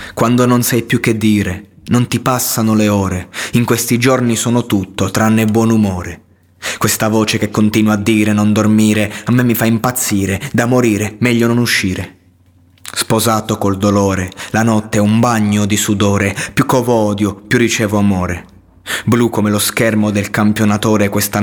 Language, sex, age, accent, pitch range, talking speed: Italian, male, 20-39, native, 100-110 Hz, 170 wpm